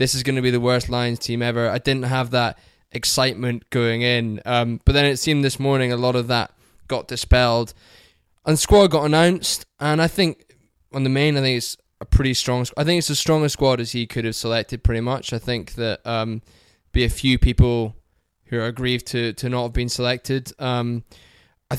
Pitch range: 115-135 Hz